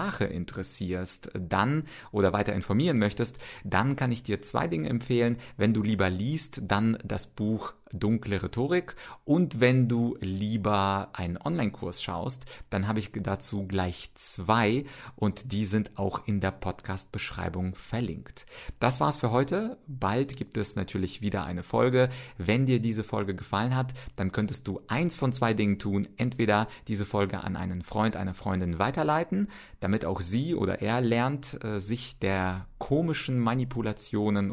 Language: German